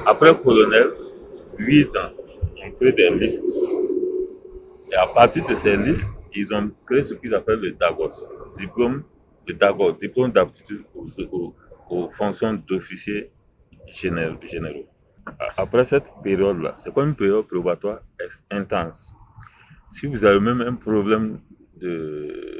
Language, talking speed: French, 130 wpm